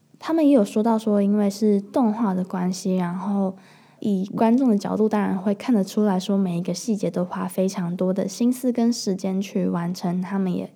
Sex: female